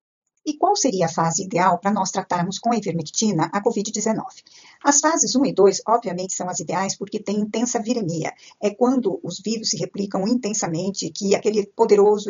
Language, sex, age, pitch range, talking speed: Portuguese, female, 50-69, 175-225 Hz, 180 wpm